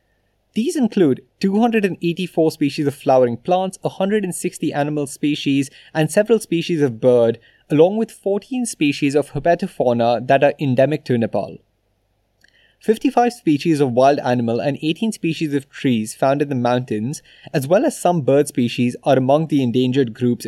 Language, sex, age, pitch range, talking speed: English, male, 20-39, 125-170 Hz, 150 wpm